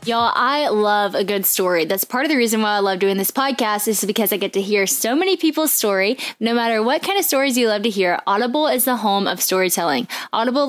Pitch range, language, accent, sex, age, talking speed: 200-260 Hz, English, American, female, 10-29, 245 wpm